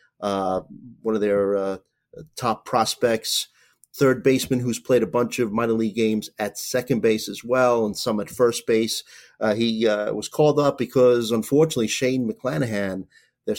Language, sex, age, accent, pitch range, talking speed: English, male, 30-49, American, 105-125 Hz, 170 wpm